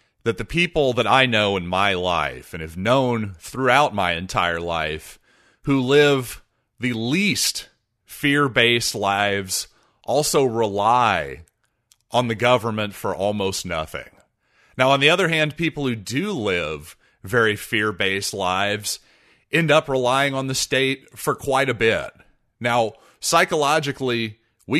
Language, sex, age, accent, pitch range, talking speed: English, male, 30-49, American, 100-135 Hz, 135 wpm